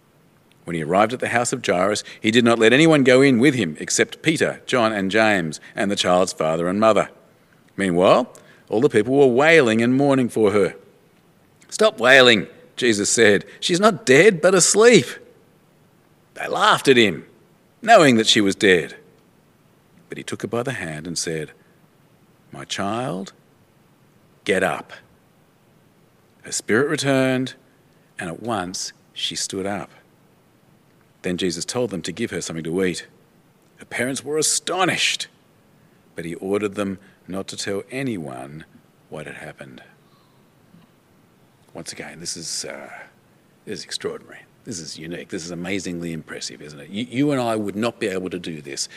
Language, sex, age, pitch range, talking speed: English, male, 40-59, 90-130 Hz, 160 wpm